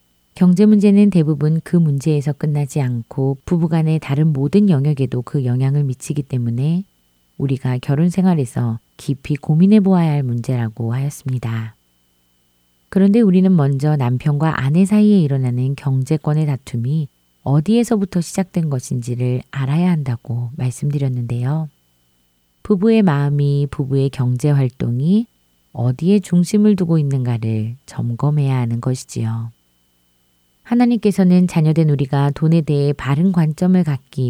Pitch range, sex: 120-170 Hz, female